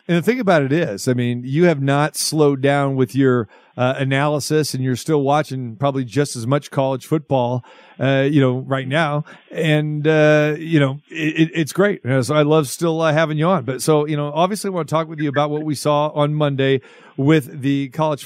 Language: English